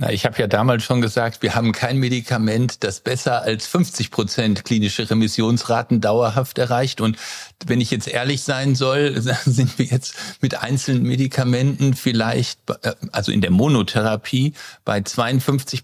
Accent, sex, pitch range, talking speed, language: German, male, 115-135 Hz, 150 wpm, German